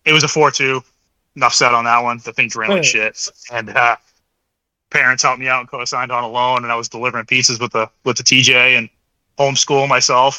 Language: English